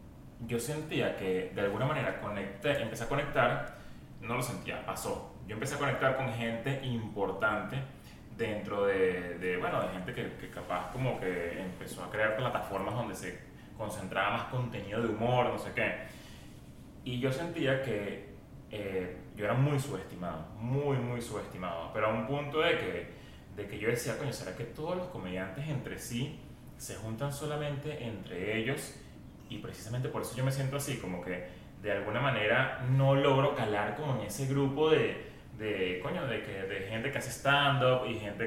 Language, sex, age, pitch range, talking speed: English, male, 20-39, 105-140 Hz, 175 wpm